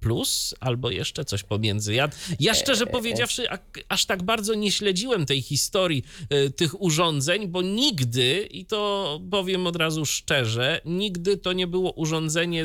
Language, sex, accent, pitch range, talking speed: Polish, male, native, 125-185 Hz, 155 wpm